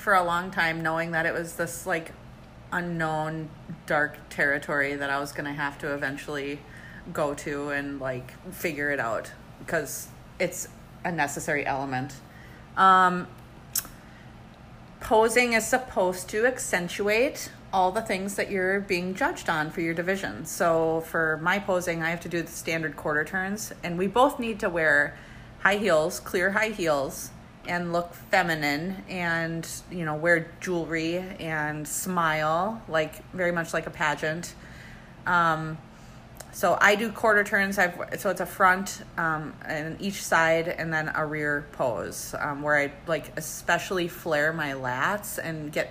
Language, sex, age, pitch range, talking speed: English, female, 30-49, 150-180 Hz, 155 wpm